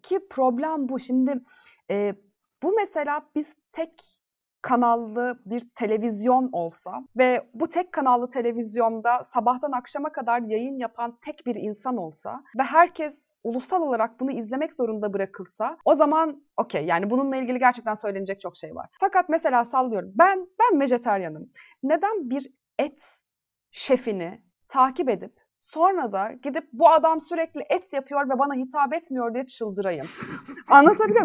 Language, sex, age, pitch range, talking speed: Turkish, female, 30-49, 230-320 Hz, 140 wpm